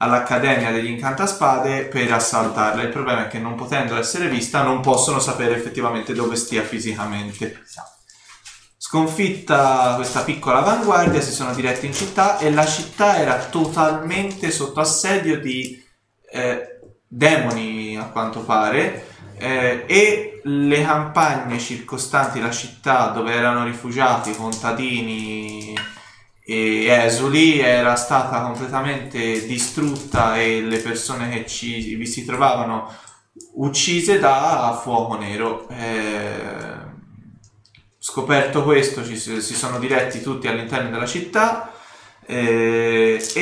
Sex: male